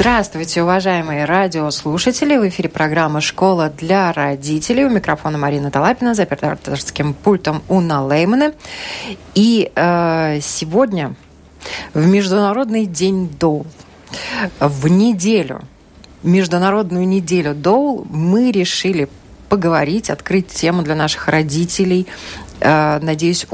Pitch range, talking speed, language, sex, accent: 160-215 Hz, 100 wpm, Russian, female, native